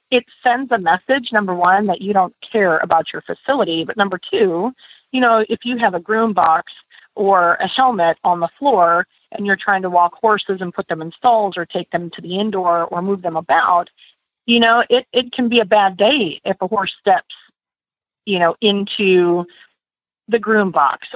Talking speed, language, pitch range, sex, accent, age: 200 wpm, English, 180-225 Hz, female, American, 40-59